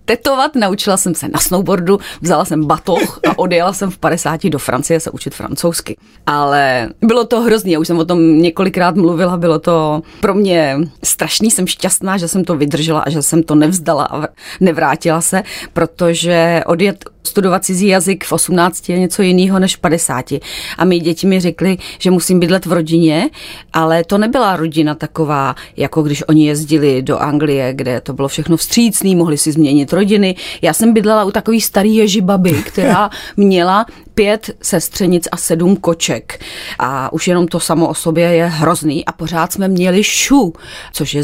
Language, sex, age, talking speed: Czech, female, 30-49, 180 wpm